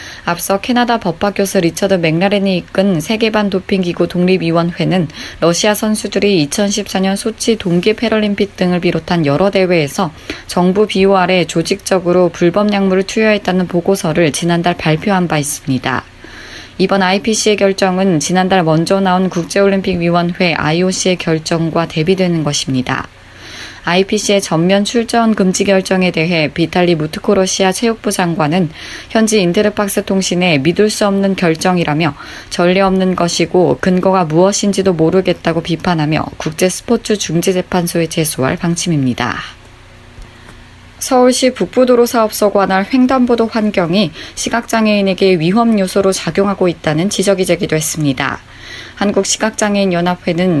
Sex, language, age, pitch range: female, Korean, 20-39, 165-200 Hz